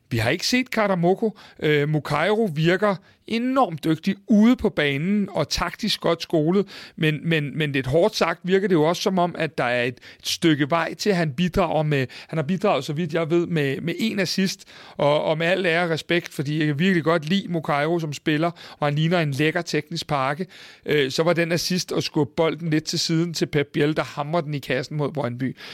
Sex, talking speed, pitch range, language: male, 215 wpm, 150-185 Hz, Danish